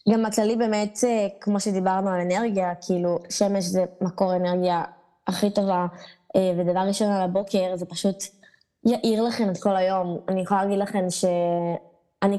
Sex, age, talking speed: female, 20-39, 145 wpm